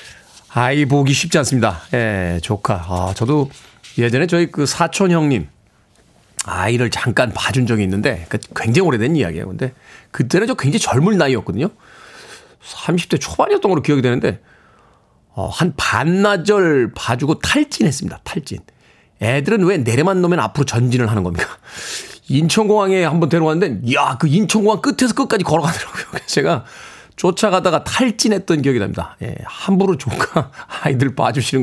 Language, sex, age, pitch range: Korean, male, 40-59, 120-185 Hz